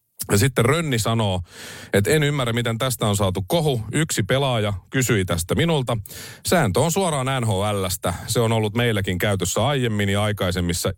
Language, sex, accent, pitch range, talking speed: Finnish, male, native, 95-130 Hz, 160 wpm